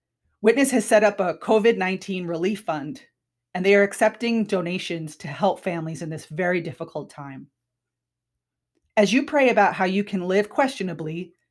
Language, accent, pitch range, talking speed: English, American, 155-205 Hz, 155 wpm